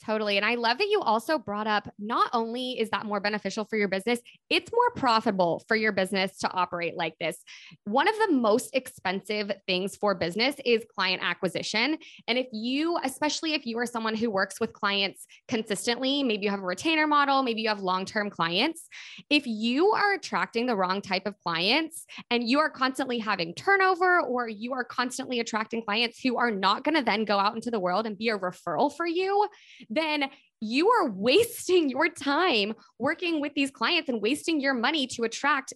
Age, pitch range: 20-39, 205-280 Hz